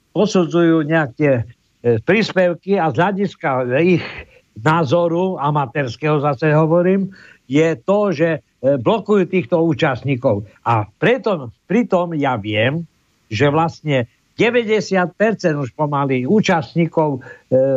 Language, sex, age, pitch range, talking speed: Slovak, male, 60-79, 140-180 Hz, 105 wpm